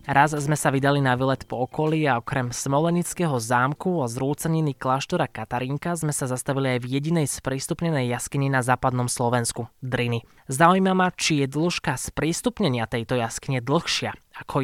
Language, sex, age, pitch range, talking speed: Slovak, male, 20-39, 125-150 Hz, 155 wpm